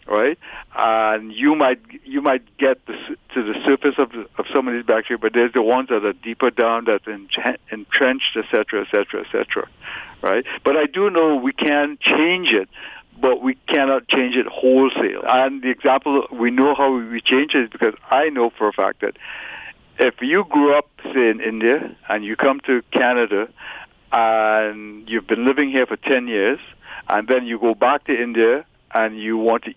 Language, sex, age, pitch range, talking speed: English, male, 60-79, 115-140 Hz, 190 wpm